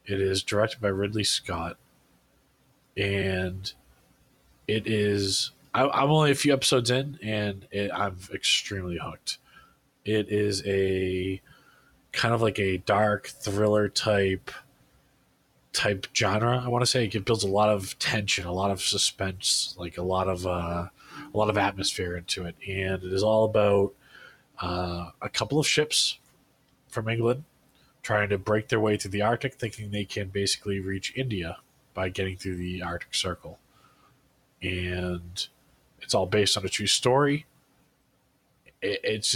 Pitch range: 95-115 Hz